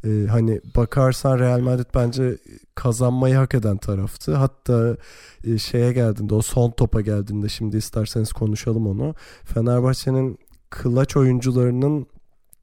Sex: male